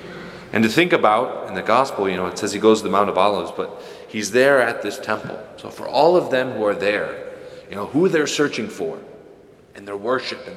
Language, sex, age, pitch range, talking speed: English, male, 30-49, 95-160 Hz, 235 wpm